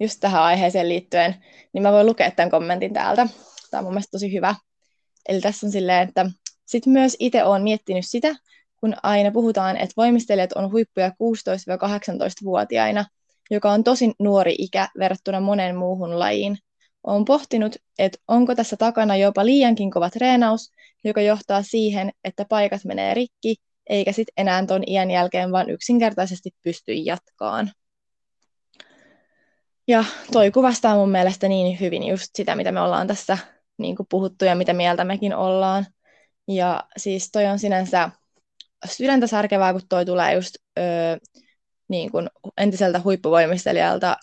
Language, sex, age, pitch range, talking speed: Finnish, female, 20-39, 185-215 Hz, 145 wpm